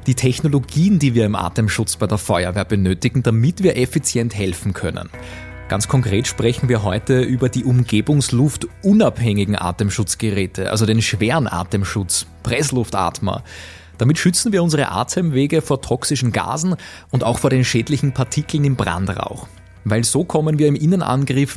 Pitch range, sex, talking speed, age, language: 100-135 Hz, male, 140 wpm, 20-39, German